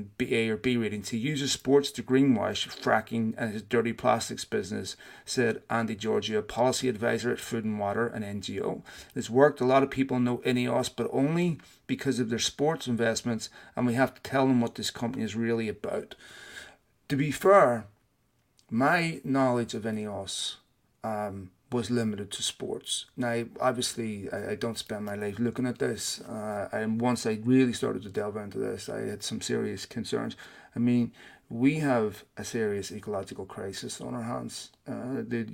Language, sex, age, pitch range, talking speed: English, male, 30-49, 110-130 Hz, 175 wpm